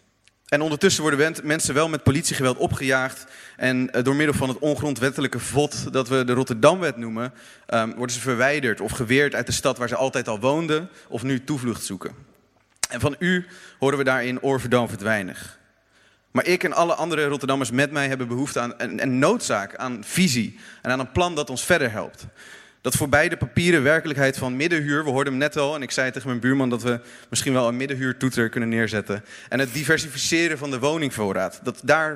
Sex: male